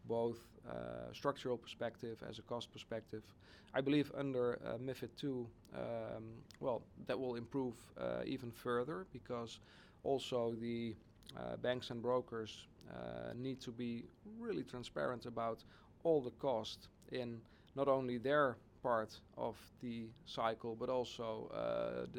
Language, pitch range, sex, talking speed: English, 110-130 Hz, male, 135 wpm